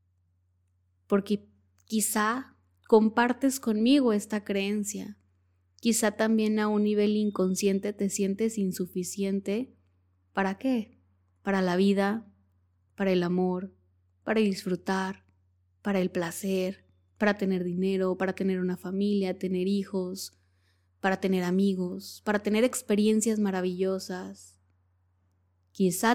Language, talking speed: Spanish, 105 wpm